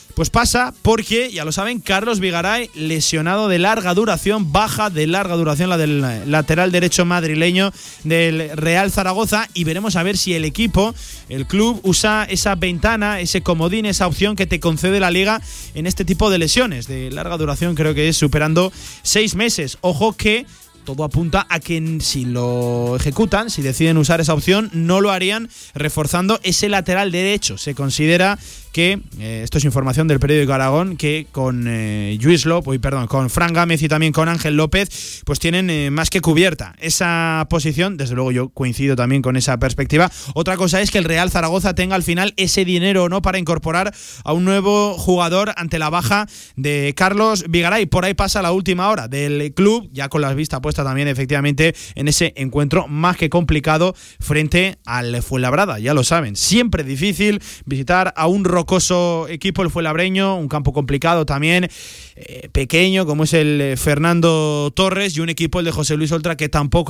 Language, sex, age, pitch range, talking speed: Spanish, male, 20-39, 150-190 Hz, 180 wpm